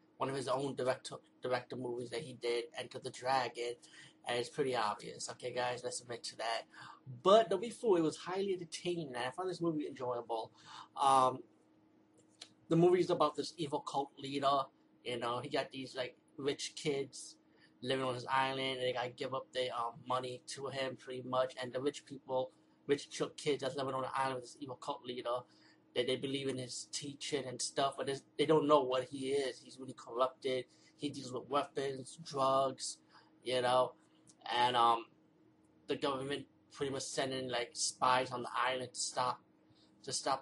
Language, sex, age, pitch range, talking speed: English, male, 30-49, 125-145 Hz, 190 wpm